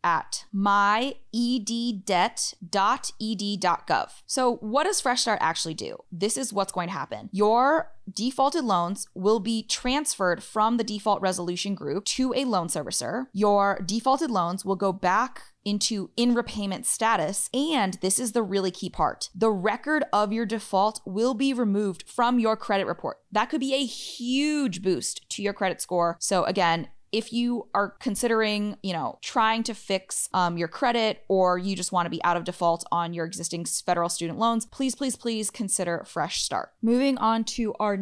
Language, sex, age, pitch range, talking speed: English, female, 20-39, 185-235 Hz, 170 wpm